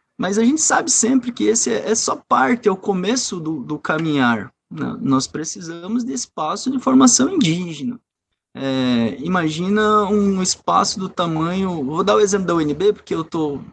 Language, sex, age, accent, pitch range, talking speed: Portuguese, male, 20-39, Brazilian, 135-210 Hz, 175 wpm